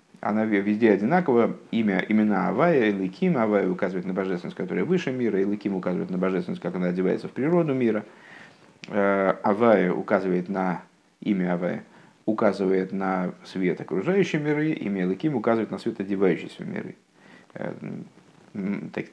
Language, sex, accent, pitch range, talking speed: Russian, male, native, 100-130 Hz, 130 wpm